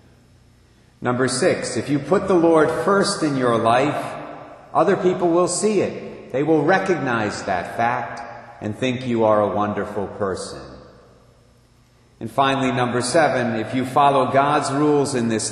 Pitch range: 115-145 Hz